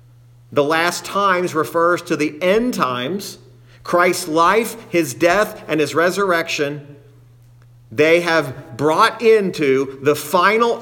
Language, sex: English, male